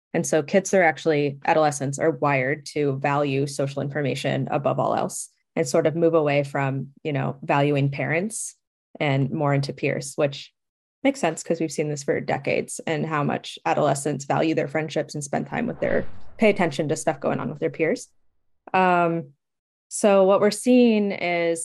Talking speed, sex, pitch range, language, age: 180 wpm, female, 150-175 Hz, English, 20-39